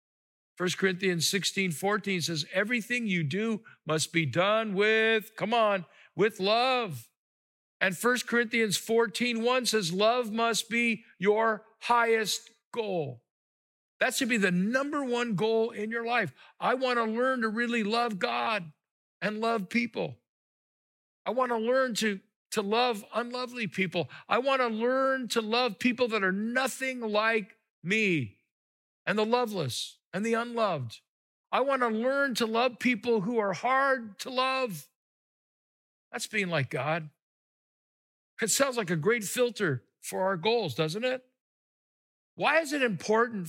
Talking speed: 150 wpm